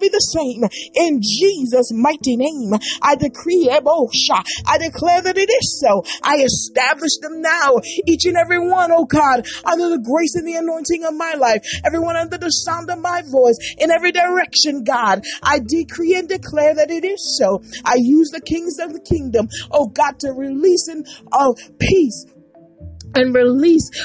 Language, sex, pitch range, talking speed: English, female, 265-345 Hz, 170 wpm